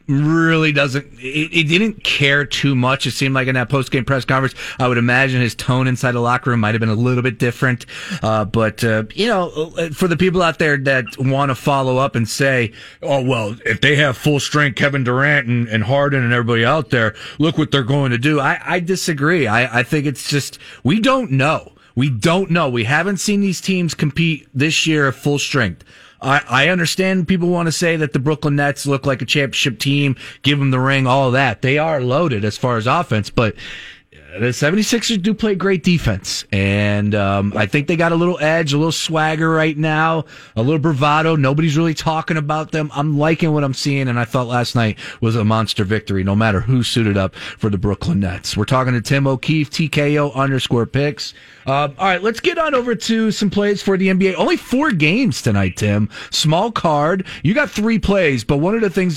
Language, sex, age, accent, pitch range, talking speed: English, male, 30-49, American, 125-160 Hz, 220 wpm